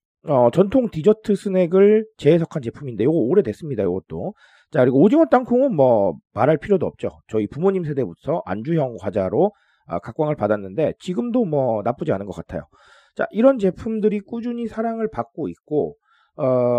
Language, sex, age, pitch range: Korean, male, 40-59, 120-195 Hz